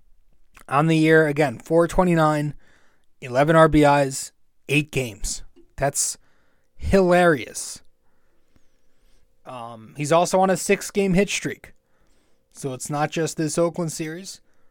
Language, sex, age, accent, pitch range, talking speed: English, male, 20-39, American, 130-180 Hz, 105 wpm